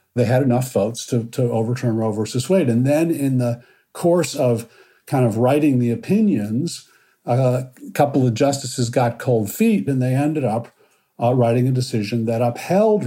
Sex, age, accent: male, 50-69, American